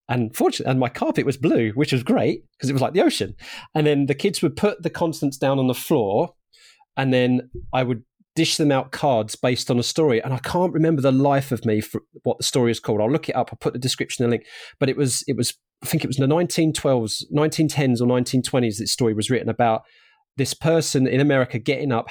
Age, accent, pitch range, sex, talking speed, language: 30-49, British, 120-150 Hz, male, 245 wpm, English